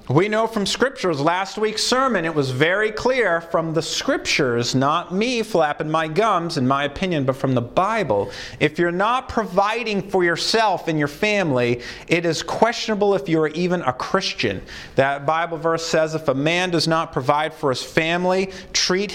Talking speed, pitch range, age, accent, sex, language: 180 wpm, 140-190 Hz, 40-59, American, male, English